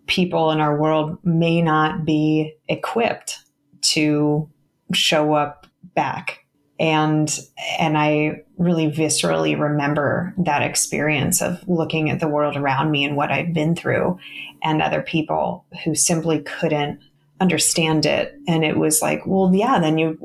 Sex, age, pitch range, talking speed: female, 20-39, 155-190 Hz, 140 wpm